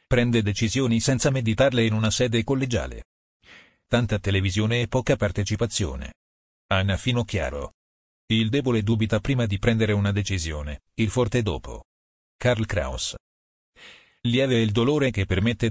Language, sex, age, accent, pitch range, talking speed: Italian, male, 40-59, native, 95-120 Hz, 125 wpm